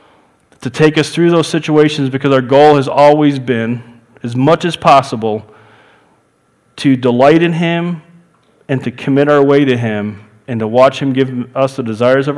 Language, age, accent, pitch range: English, 40-59, American, 120-155 Hz